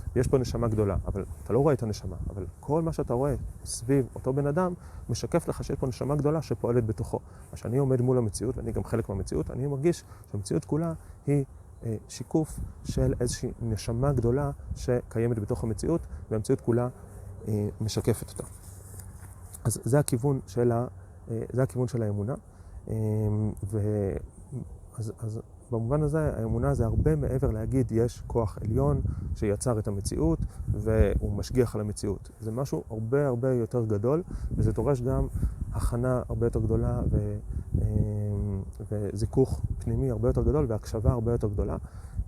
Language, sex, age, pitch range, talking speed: Hebrew, male, 30-49, 100-130 Hz, 140 wpm